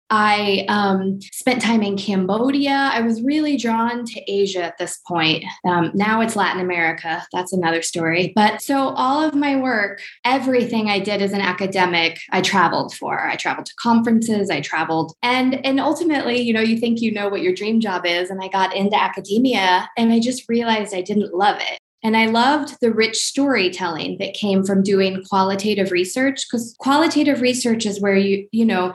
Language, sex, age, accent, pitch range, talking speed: English, female, 20-39, American, 195-235 Hz, 190 wpm